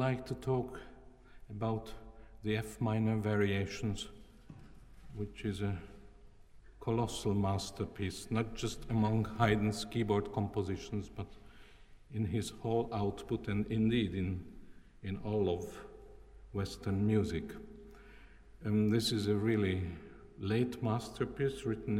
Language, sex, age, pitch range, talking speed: English, male, 50-69, 100-115 Hz, 110 wpm